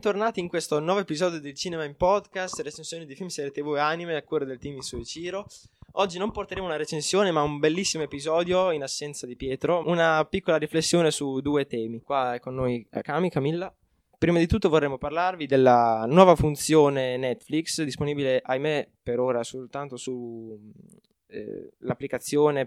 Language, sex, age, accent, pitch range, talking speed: Italian, male, 20-39, native, 130-165 Hz, 170 wpm